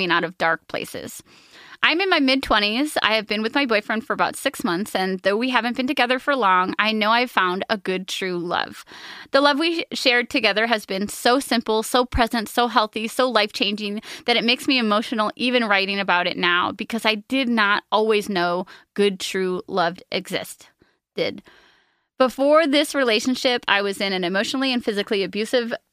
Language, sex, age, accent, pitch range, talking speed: English, female, 20-39, American, 195-250 Hz, 185 wpm